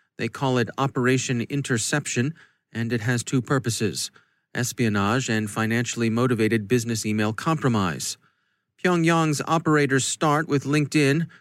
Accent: American